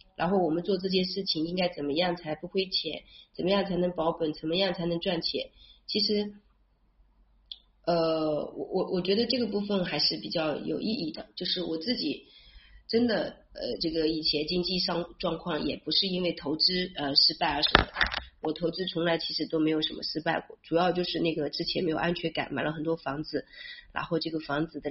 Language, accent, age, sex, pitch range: Chinese, native, 30-49, female, 155-180 Hz